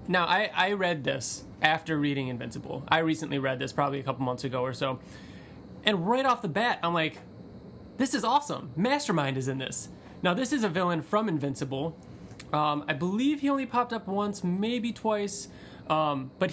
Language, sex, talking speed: English, male, 190 wpm